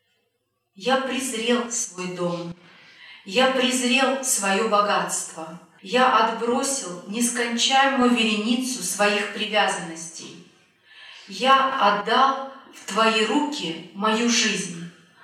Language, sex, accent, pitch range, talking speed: Russian, female, native, 180-245 Hz, 85 wpm